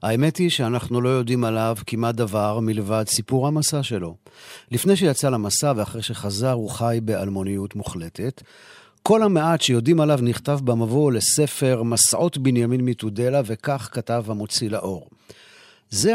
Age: 50-69